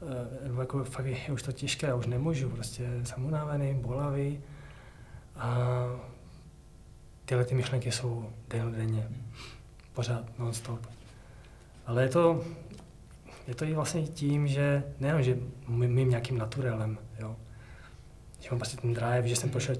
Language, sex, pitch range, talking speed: Czech, male, 120-140 Hz, 135 wpm